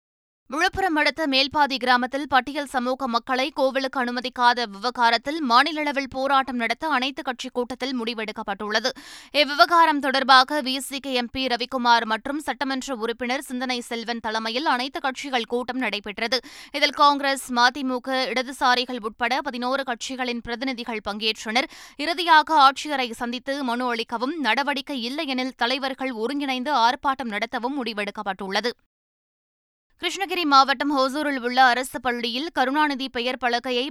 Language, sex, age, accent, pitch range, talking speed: Tamil, female, 20-39, native, 235-275 Hz, 115 wpm